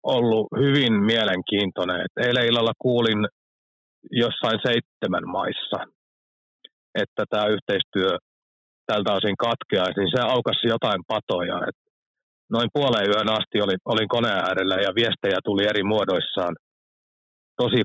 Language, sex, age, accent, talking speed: Finnish, male, 30-49, native, 120 wpm